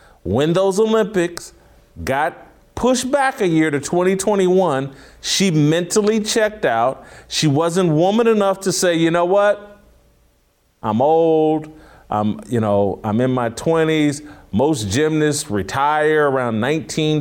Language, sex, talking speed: English, male, 130 wpm